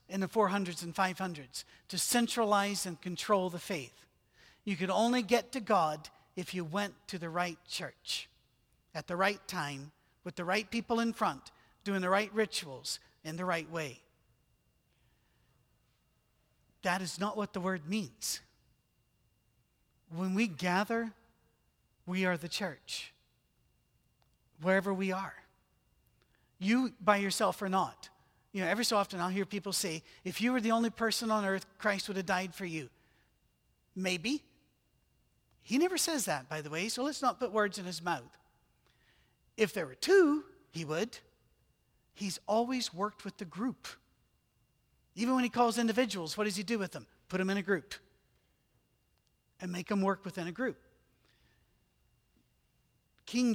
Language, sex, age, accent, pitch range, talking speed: English, male, 50-69, American, 180-220 Hz, 155 wpm